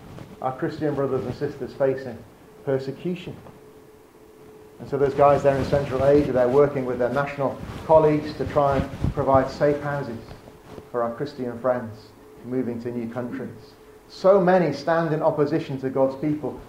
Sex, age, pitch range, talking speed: male, 40-59, 135-175 Hz, 155 wpm